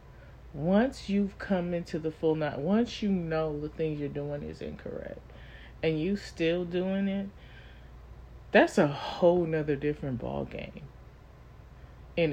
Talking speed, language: 140 wpm, English